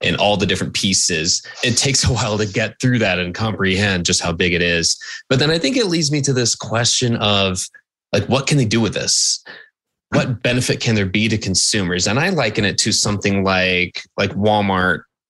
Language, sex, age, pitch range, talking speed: English, male, 20-39, 95-120 Hz, 210 wpm